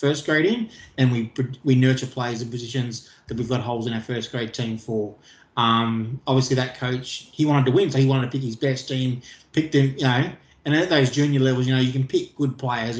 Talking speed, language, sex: 240 wpm, English, male